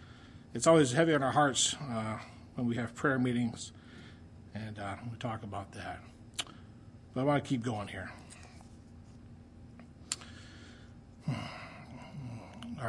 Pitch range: 115-150 Hz